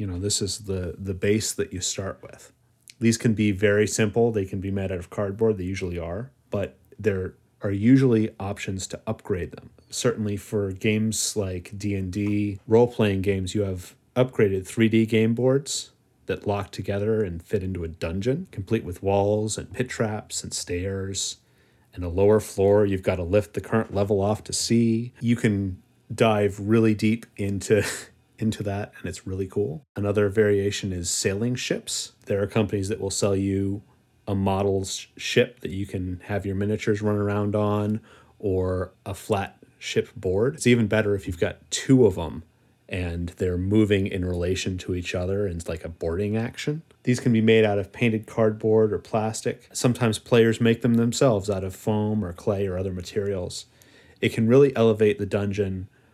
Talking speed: 180 wpm